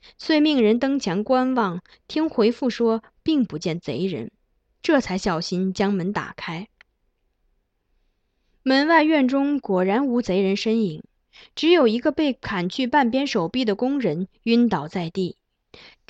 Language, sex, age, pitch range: Chinese, female, 20-39, 190-265 Hz